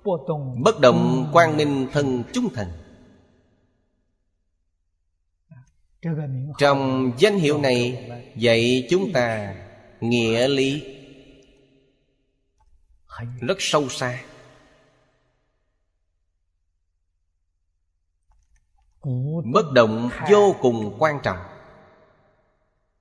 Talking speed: 65 wpm